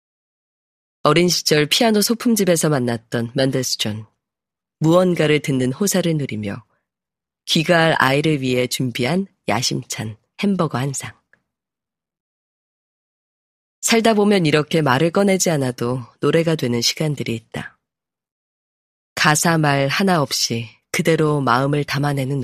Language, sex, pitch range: Korean, female, 125-170 Hz